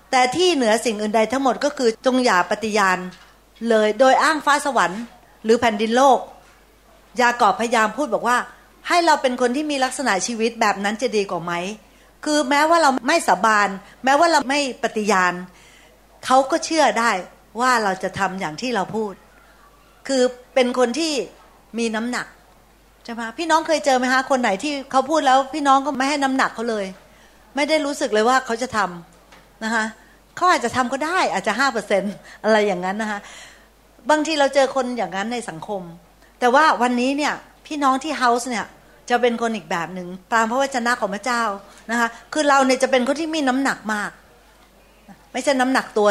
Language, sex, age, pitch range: Thai, female, 60-79, 215-275 Hz